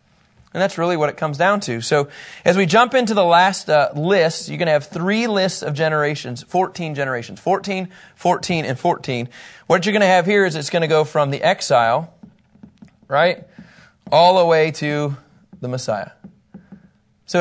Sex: male